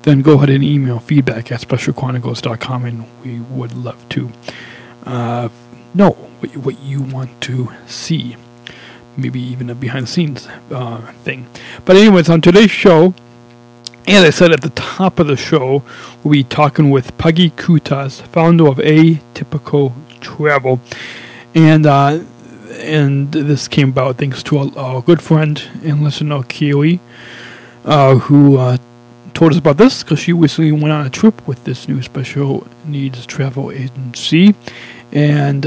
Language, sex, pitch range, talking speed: English, male, 125-155 Hz, 150 wpm